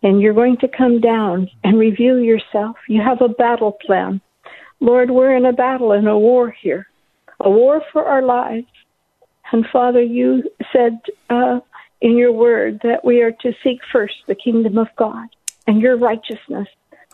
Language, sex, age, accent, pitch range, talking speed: English, female, 60-79, American, 200-240 Hz, 170 wpm